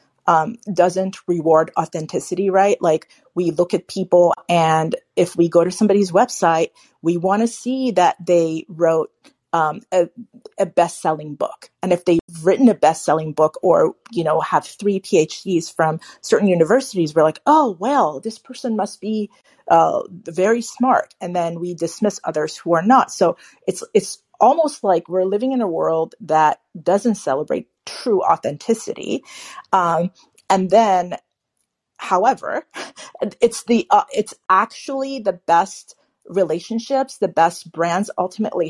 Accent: American